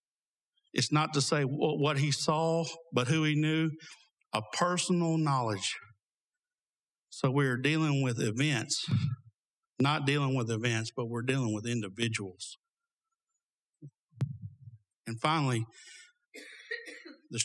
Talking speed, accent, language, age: 110 wpm, American, English, 60-79